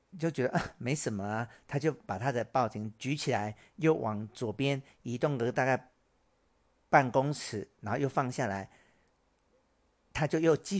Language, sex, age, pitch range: Chinese, male, 50-69, 105-145 Hz